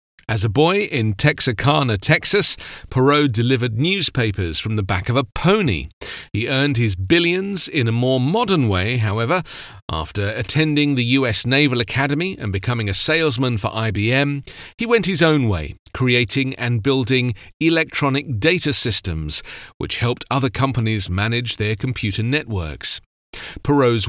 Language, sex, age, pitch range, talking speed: English, male, 40-59, 105-140 Hz, 140 wpm